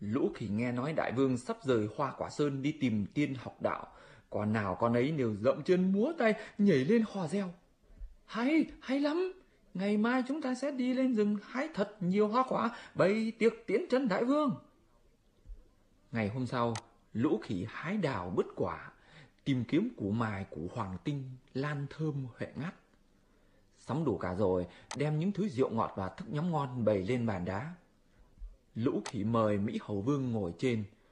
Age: 20-39